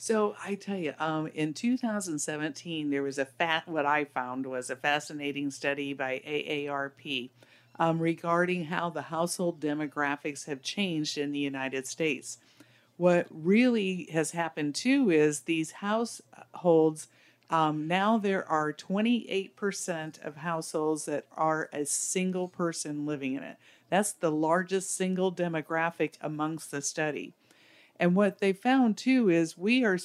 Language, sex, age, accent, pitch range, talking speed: English, female, 50-69, American, 150-190 Hz, 140 wpm